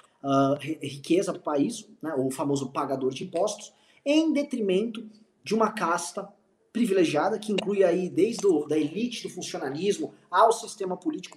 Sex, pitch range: male, 190-260 Hz